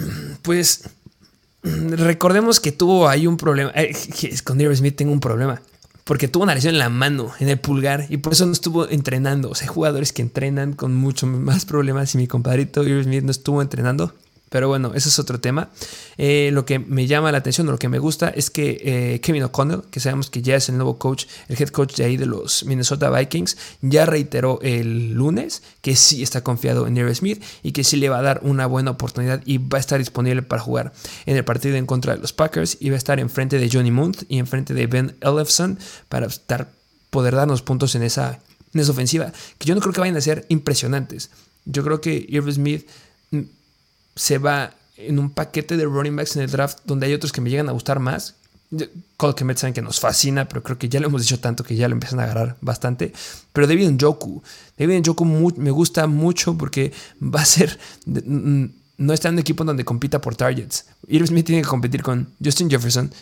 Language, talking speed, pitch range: Spanish, 215 wpm, 130-150 Hz